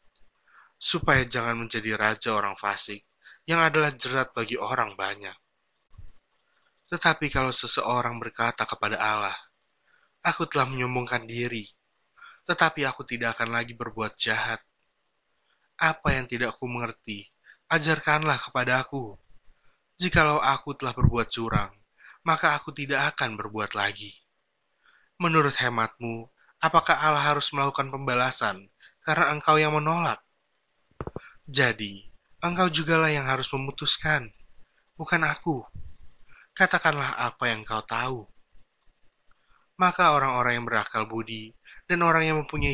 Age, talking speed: 20-39, 115 wpm